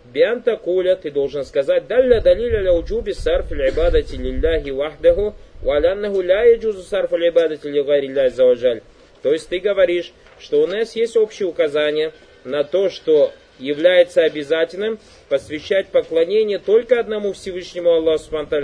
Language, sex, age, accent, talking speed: Russian, male, 30-49, native, 80 wpm